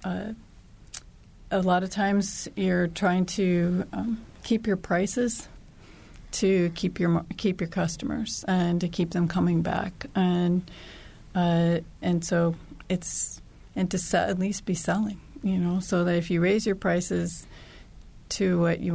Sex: female